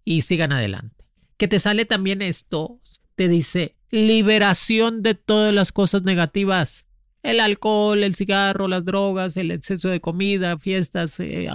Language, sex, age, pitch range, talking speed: Spanish, male, 40-59, 155-210 Hz, 145 wpm